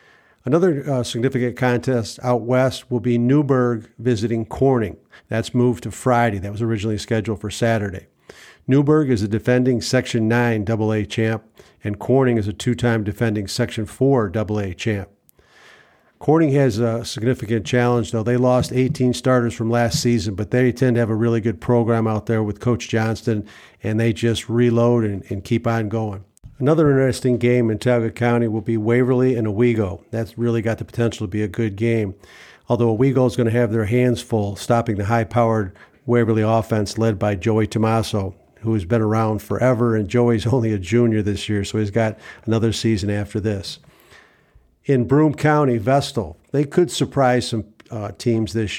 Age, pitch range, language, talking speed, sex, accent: 50-69, 110-125 Hz, English, 175 wpm, male, American